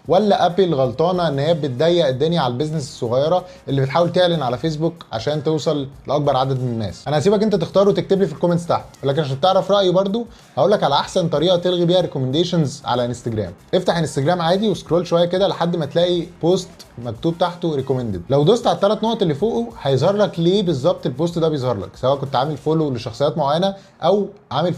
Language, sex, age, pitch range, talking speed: Arabic, male, 20-39, 140-185 Hz, 195 wpm